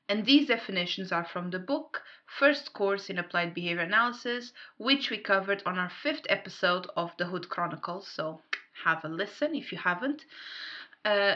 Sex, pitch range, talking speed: female, 180-255 Hz, 170 wpm